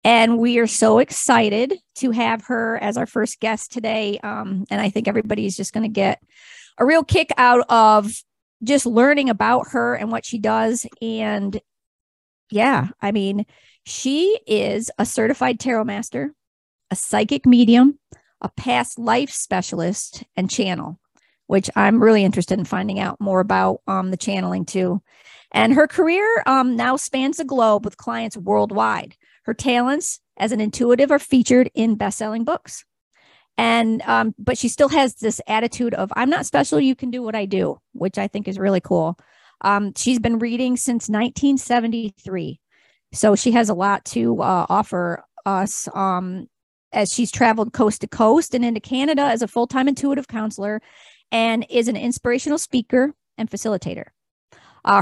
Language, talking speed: English, 165 wpm